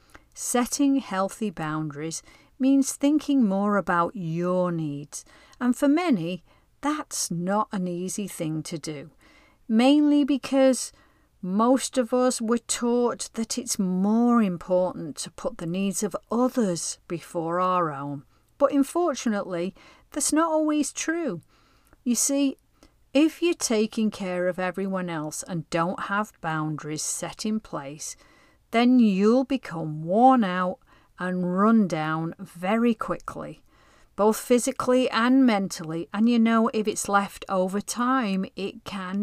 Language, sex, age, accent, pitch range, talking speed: English, female, 40-59, British, 175-255 Hz, 130 wpm